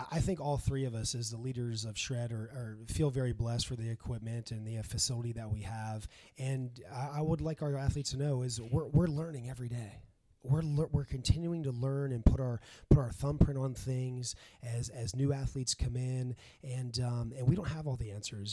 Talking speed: 225 wpm